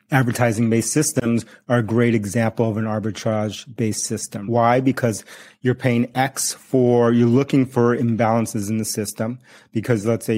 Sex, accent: male, American